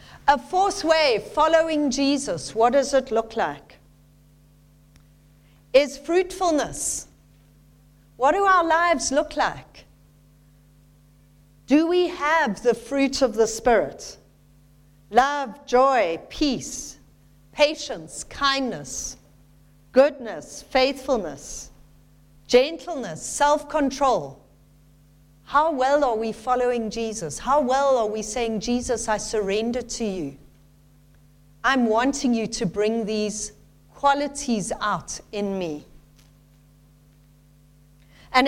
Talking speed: 100 wpm